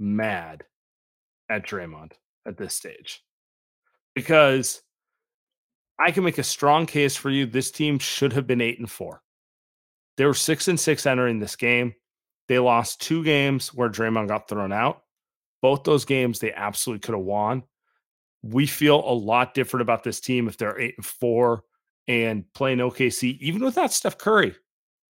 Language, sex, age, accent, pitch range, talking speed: English, male, 30-49, American, 115-140 Hz, 160 wpm